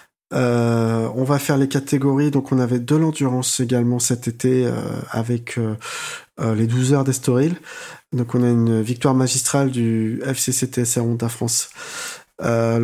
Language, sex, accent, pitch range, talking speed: French, male, French, 115-135 Hz, 160 wpm